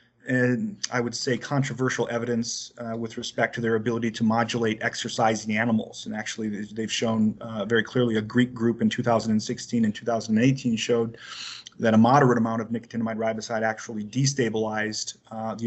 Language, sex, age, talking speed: English, male, 30-49, 160 wpm